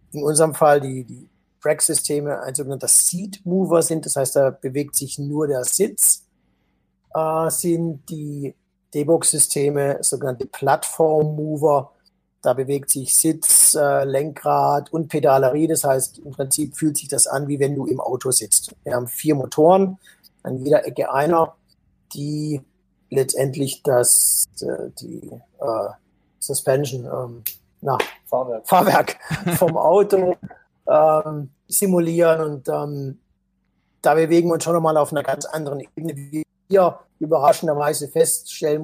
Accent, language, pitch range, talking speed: German, German, 140-160 Hz, 140 wpm